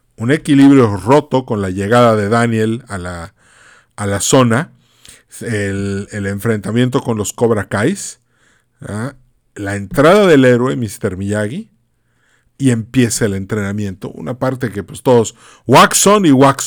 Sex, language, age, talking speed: male, Spanish, 40-59, 145 wpm